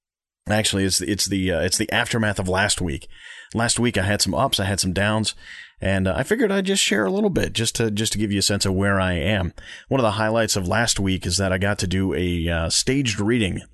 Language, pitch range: English, 90-105 Hz